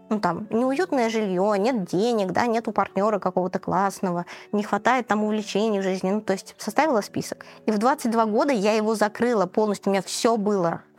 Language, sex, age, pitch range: Russian, female, 20-39, 185-225 Hz